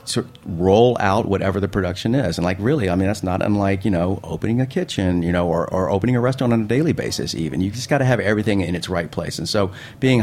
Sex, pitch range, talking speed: male, 95-120 Hz, 260 wpm